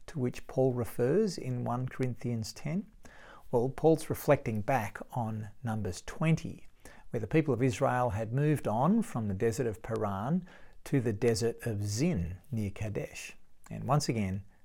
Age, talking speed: 40-59, 155 wpm